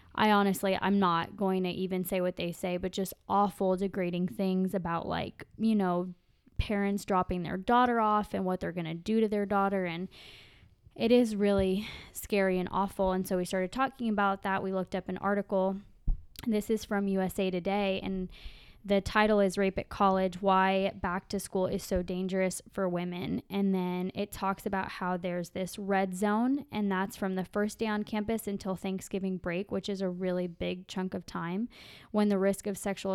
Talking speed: 195 wpm